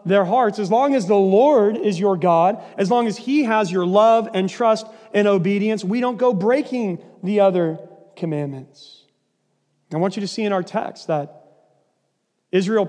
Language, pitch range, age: English, 175-215 Hz, 40-59